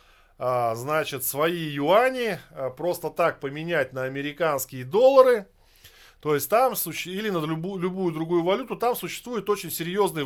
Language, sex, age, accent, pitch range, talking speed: Russian, male, 20-39, native, 135-185 Hz, 125 wpm